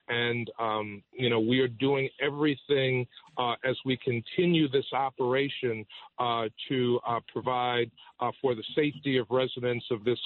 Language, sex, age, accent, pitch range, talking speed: English, male, 40-59, American, 120-135 Hz, 150 wpm